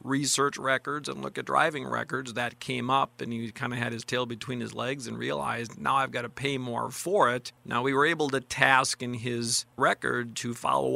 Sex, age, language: male, 40-59, English